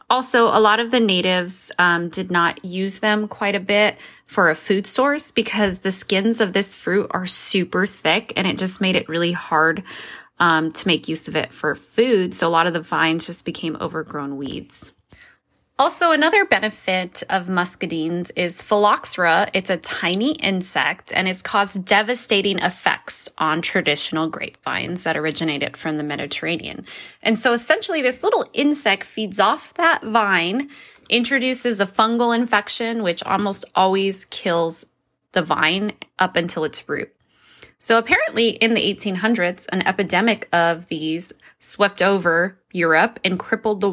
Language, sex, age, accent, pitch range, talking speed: English, female, 20-39, American, 170-225 Hz, 155 wpm